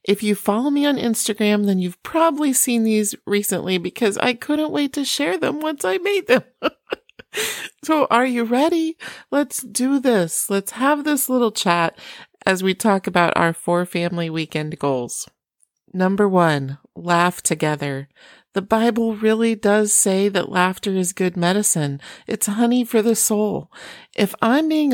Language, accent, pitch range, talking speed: English, American, 185-245 Hz, 160 wpm